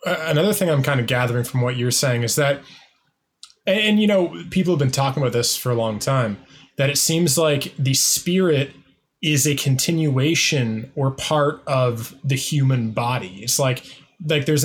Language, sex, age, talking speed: English, male, 20-39, 185 wpm